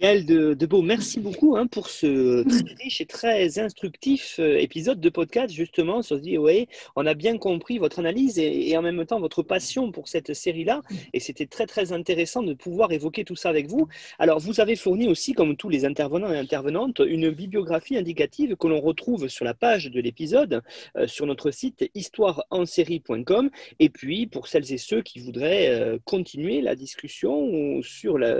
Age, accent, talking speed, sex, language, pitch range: 40-59, French, 185 wpm, male, French, 160-230 Hz